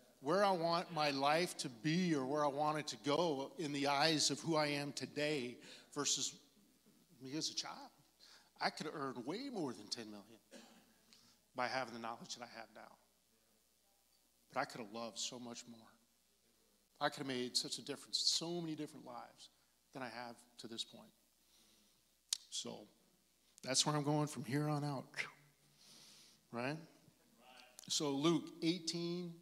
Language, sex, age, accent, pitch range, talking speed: English, male, 40-59, American, 125-165 Hz, 165 wpm